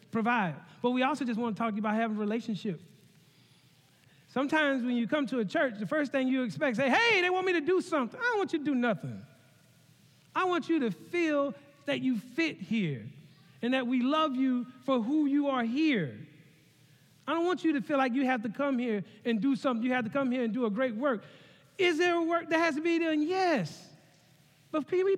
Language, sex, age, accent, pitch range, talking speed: English, male, 40-59, American, 165-270 Hz, 230 wpm